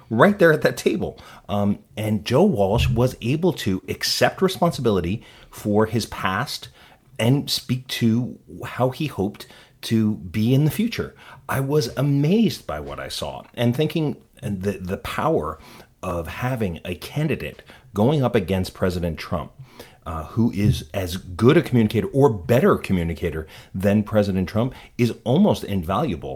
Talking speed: 150 wpm